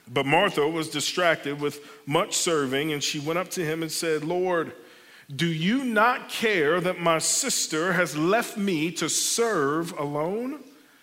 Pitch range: 150-180 Hz